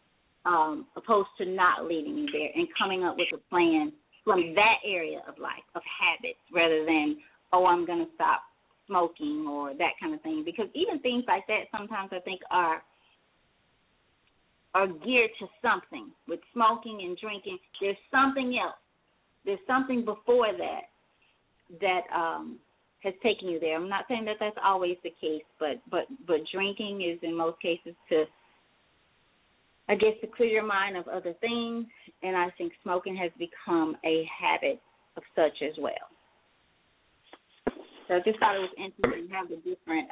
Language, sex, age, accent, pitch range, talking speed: English, female, 30-49, American, 170-225 Hz, 165 wpm